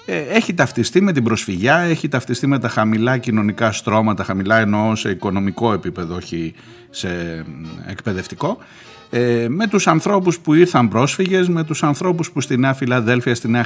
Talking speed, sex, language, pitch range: 160 wpm, male, Greek, 120-165 Hz